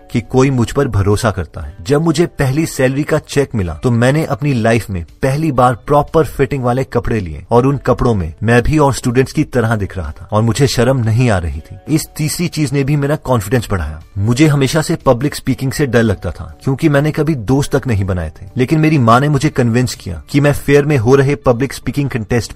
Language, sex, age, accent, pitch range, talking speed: Hindi, male, 30-49, native, 110-145 Hz, 235 wpm